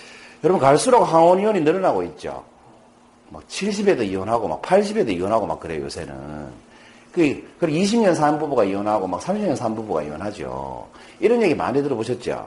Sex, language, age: male, Korean, 40-59